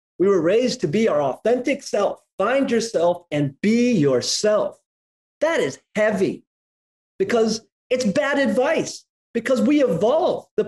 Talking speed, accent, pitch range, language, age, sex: 135 wpm, American, 180-245 Hz, English, 30-49, male